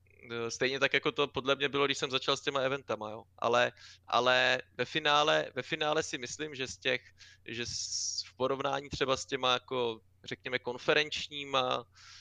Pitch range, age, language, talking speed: 115-135 Hz, 20-39, Czech, 170 wpm